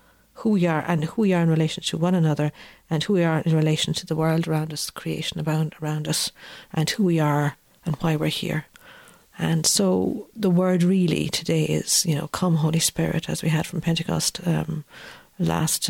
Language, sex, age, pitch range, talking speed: English, female, 50-69, 155-175 Hz, 200 wpm